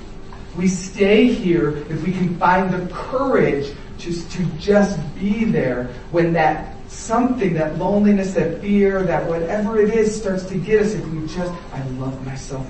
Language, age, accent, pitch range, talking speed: English, 40-59, American, 150-200 Hz, 165 wpm